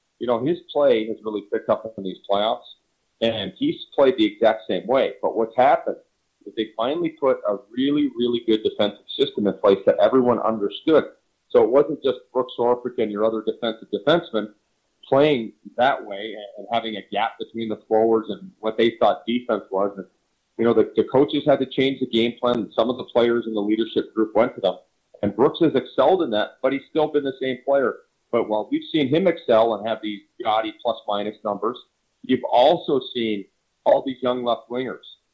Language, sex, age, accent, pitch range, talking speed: English, male, 40-59, American, 110-140 Hz, 200 wpm